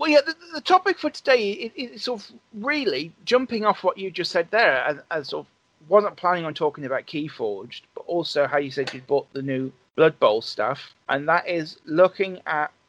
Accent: British